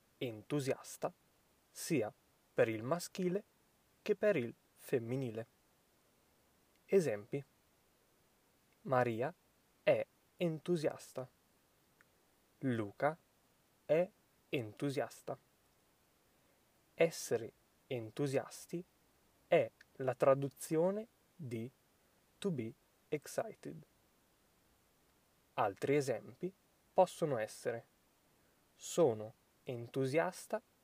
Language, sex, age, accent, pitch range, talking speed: Italian, male, 20-39, native, 120-175 Hz, 60 wpm